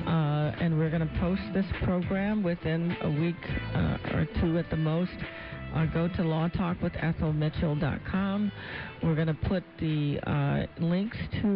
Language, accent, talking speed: English, American, 150 wpm